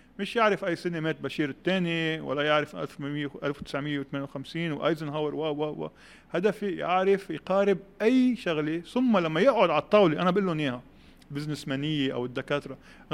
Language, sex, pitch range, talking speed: Arabic, male, 160-215 Hz, 150 wpm